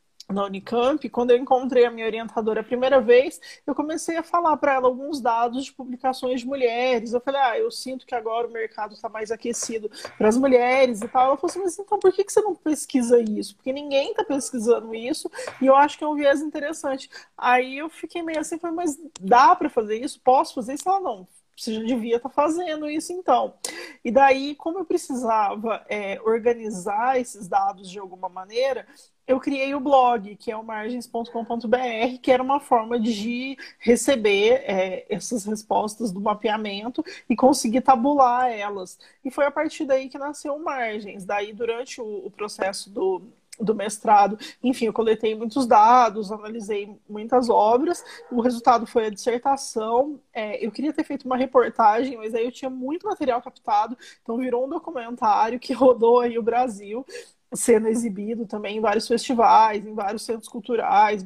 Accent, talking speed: Brazilian, 180 wpm